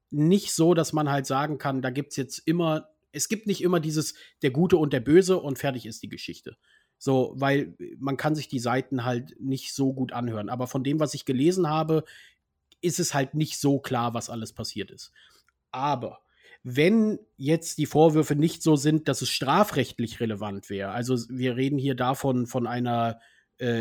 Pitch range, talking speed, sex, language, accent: 130-165 Hz, 190 wpm, male, German, German